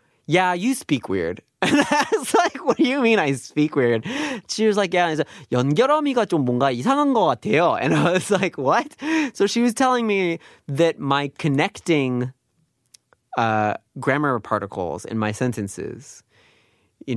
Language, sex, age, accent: Korean, male, 30-49, American